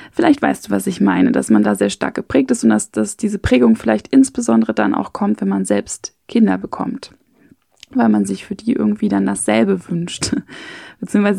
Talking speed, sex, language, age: 200 wpm, female, German, 20-39